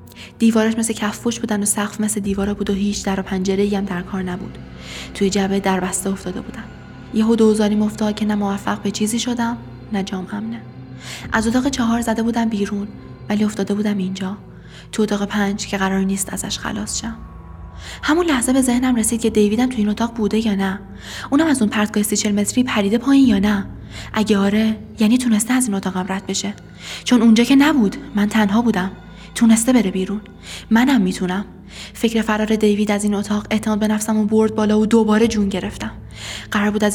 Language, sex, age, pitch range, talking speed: Persian, female, 20-39, 195-225 Hz, 195 wpm